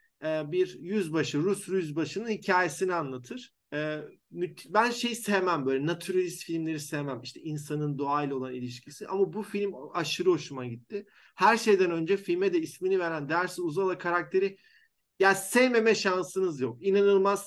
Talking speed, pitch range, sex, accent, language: 135 wpm, 150-195 Hz, male, native, Turkish